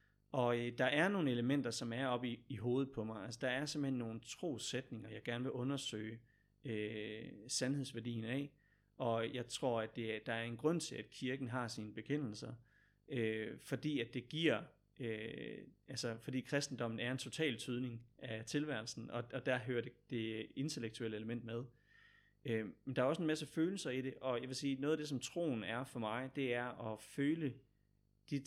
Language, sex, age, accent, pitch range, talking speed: Danish, male, 30-49, native, 115-135 Hz, 200 wpm